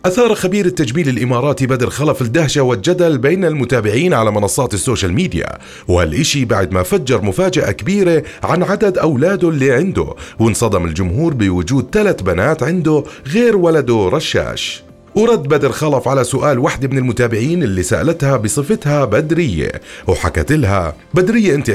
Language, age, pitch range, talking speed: Arabic, 30-49, 115-165 Hz, 140 wpm